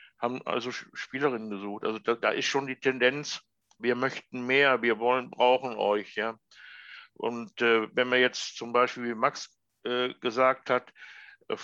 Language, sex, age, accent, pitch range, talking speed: German, male, 60-79, German, 115-140 Hz, 160 wpm